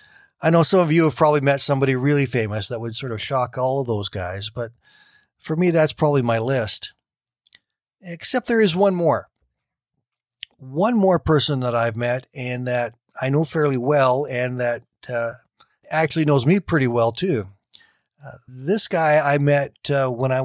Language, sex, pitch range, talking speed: English, male, 120-160 Hz, 180 wpm